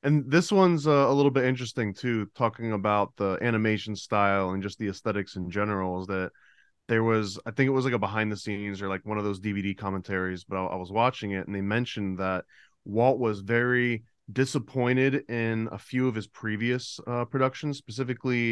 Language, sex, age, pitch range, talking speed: English, male, 20-39, 100-120 Hz, 200 wpm